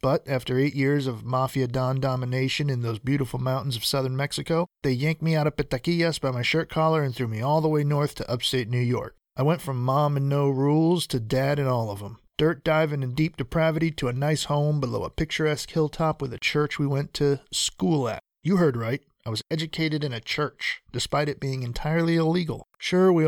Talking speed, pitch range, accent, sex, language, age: 220 wpm, 130-155 Hz, American, male, English, 40-59